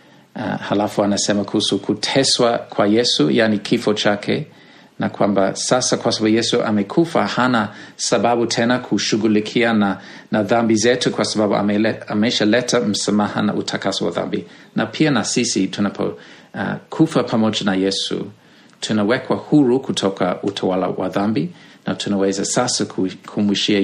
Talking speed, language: 135 wpm, Swahili